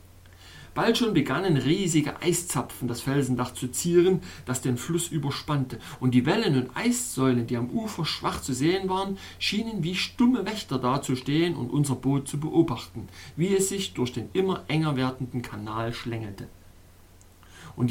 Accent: German